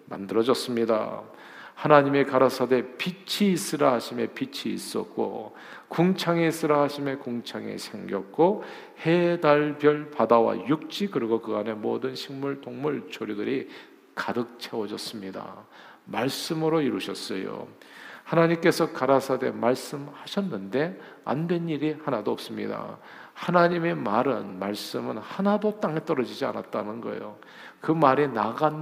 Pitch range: 125-160 Hz